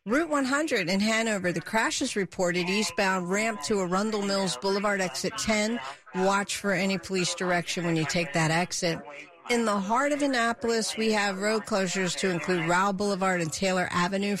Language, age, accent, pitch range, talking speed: English, 50-69, American, 180-225 Hz, 175 wpm